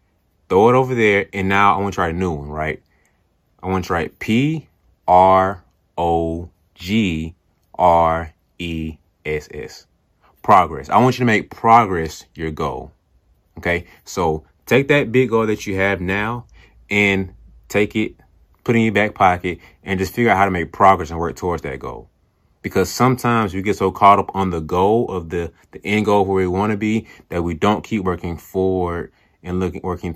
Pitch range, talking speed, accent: 85-110 Hz, 180 wpm, American